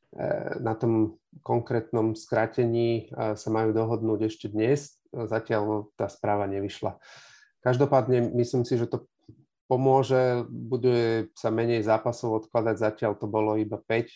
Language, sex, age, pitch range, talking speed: Slovak, male, 40-59, 110-130 Hz, 125 wpm